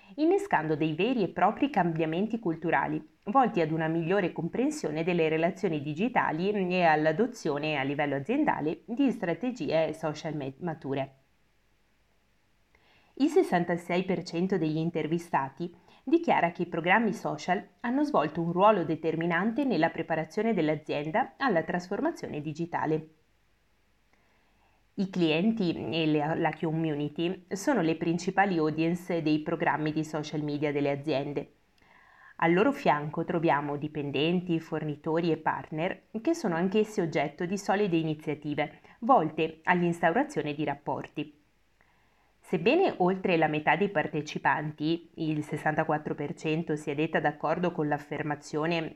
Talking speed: 115 wpm